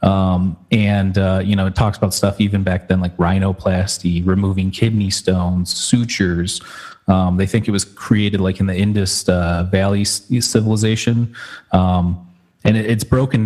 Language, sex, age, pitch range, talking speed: English, male, 30-49, 95-105 Hz, 155 wpm